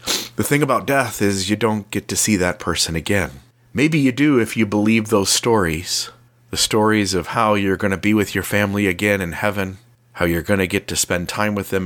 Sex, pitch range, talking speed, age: male, 90-120 Hz, 230 wpm, 40-59